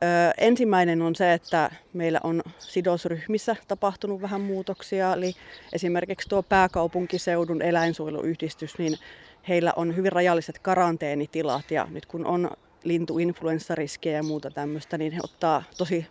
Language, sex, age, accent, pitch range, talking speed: Finnish, female, 30-49, native, 155-180 Hz, 125 wpm